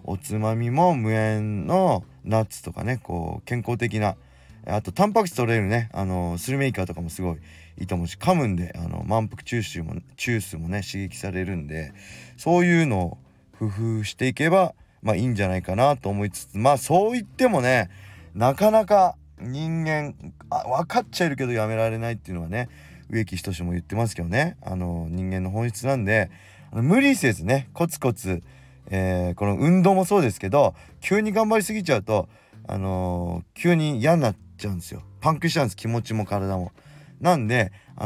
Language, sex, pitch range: Japanese, male, 95-140 Hz